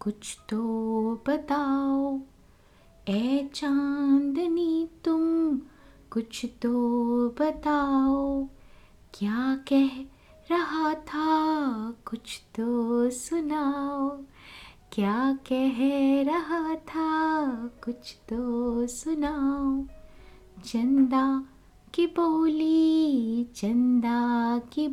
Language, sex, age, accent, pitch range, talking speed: Hindi, female, 20-39, native, 235-305 Hz, 65 wpm